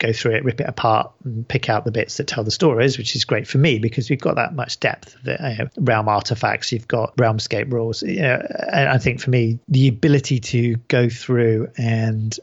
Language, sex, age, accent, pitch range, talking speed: English, male, 40-59, British, 115-135 Hz, 230 wpm